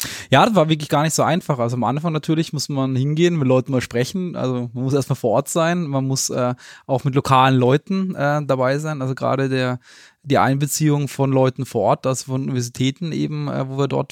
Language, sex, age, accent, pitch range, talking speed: German, male, 20-39, German, 130-150 Hz, 225 wpm